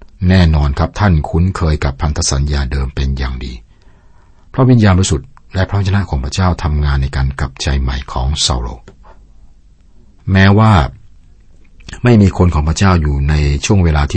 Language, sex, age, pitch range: Thai, male, 60-79, 70-90 Hz